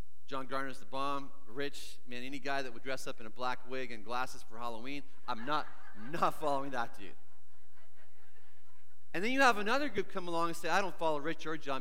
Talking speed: 215 wpm